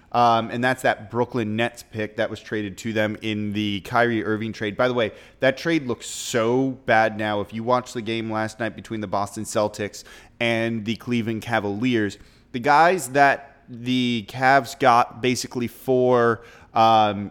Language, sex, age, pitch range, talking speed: English, male, 30-49, 105-125 Hz, 175 wpm